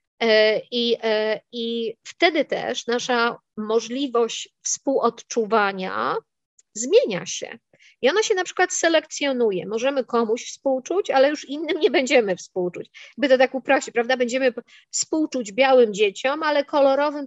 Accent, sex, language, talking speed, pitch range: native, female, Polish, 120 wpm, 215-265 Hz